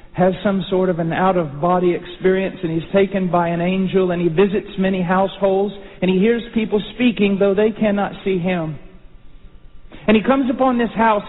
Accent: American